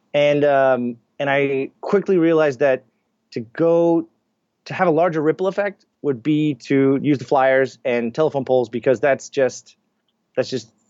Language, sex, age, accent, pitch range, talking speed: English, male, 30-49, American, 130-155 Hz, 160 wpm